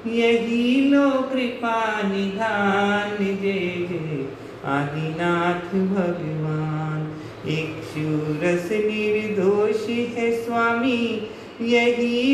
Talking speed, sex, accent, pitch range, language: 70 wpm, male, native, 145-175 Hz, Hindi